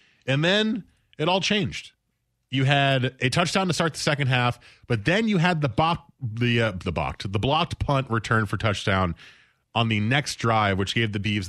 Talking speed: 200 wpm